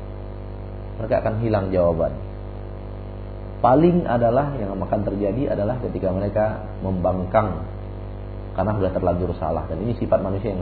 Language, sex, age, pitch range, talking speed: Malay, male, 40-59, 95-110 Hz, 125 wpm